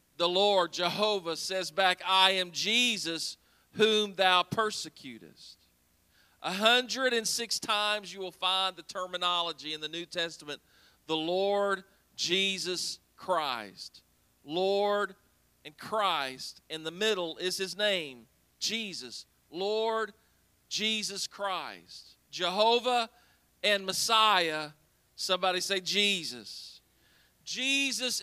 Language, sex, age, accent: English, male, 40-59, American